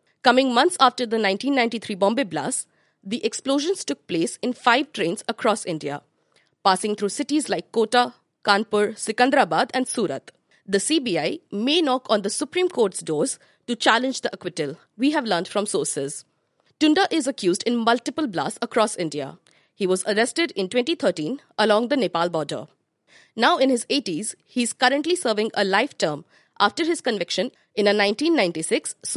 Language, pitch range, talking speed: English, 200-275 Hz, 160 wpm